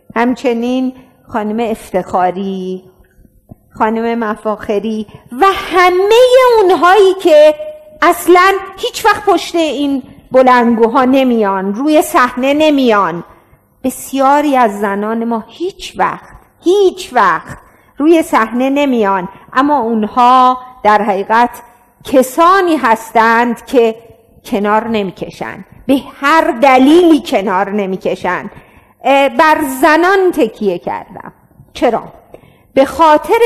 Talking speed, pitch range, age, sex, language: 90 wpm, 210-305 Hz, 50-69, female, Persian